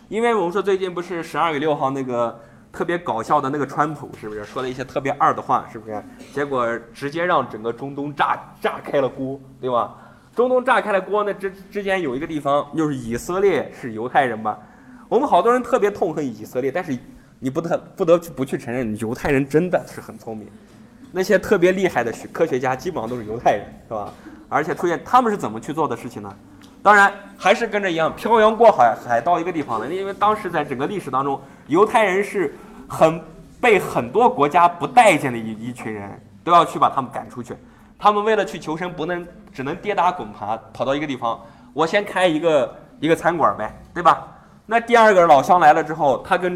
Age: 20-39